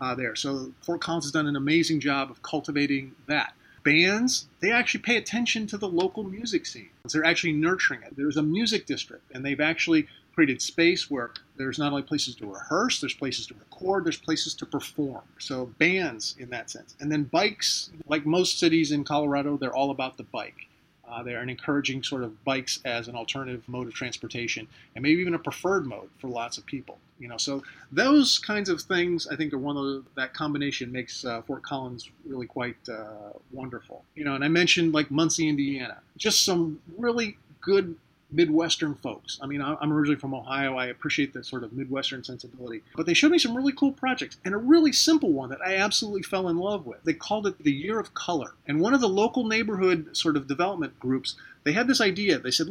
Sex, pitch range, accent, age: male, 135-190 Hz, American, 30-49